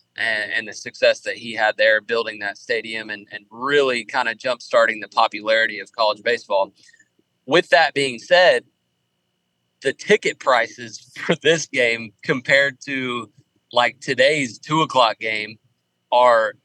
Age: 30-49